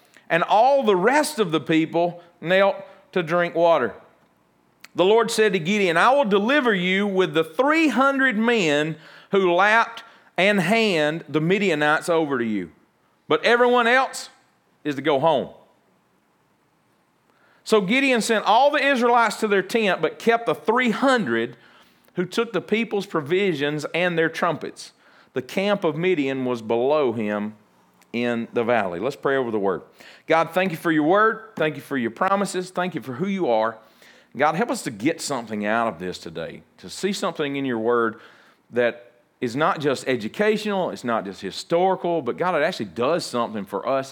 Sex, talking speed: male, 170 wpm